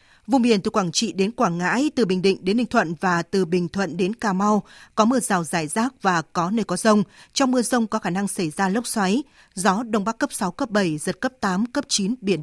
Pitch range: 185-235 Hz